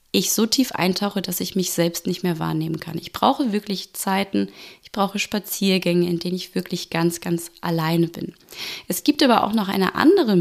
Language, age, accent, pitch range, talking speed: German, 20-39, German, 175-210 Hz, 195 wpm